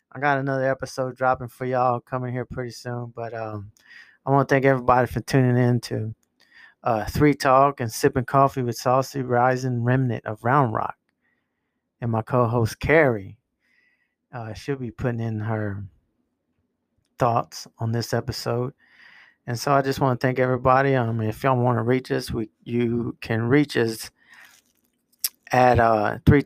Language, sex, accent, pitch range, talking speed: English, male, American, 115-130 Hz, 160 wpm